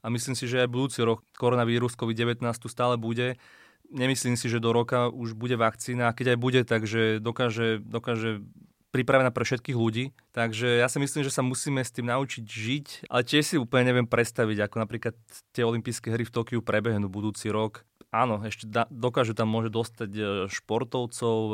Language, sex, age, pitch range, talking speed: Slovak, male, 20-39, 110-125 Hz, 180 wpm